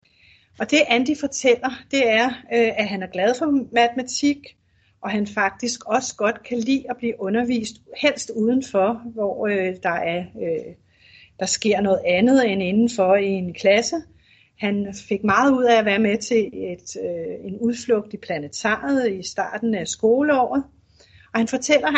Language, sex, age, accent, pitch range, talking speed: Danish, female, 30-49, native, 195-245 Hz, 150 wpm